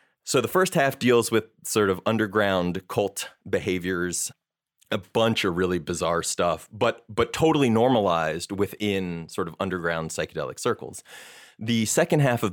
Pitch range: 90-110 Hz